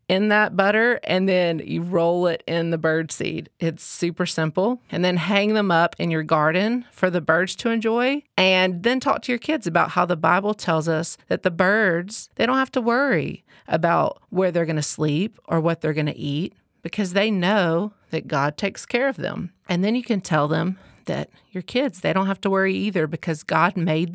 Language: English